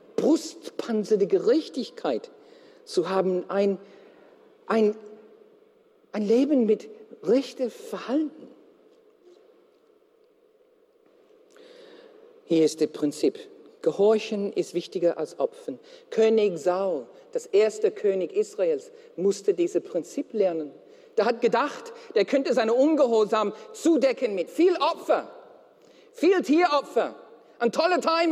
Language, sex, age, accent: German, male, 50-69, German